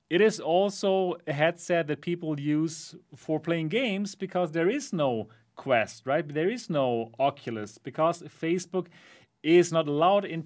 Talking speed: 155 wpm